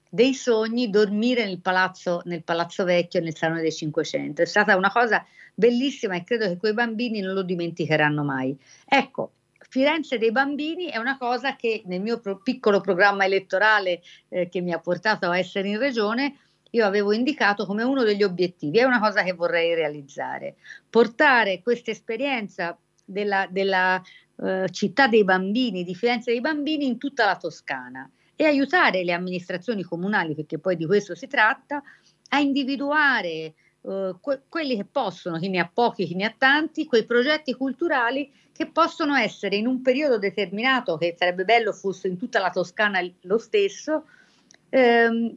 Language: Italian